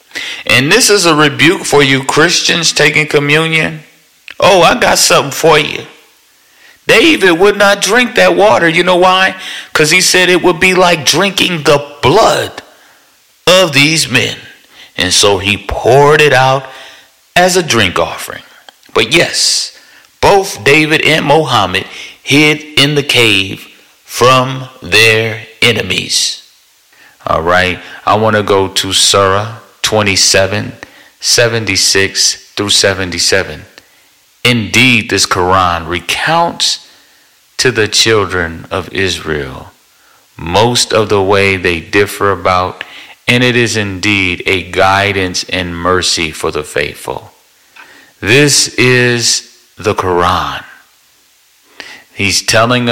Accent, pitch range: American, 100-155 Hz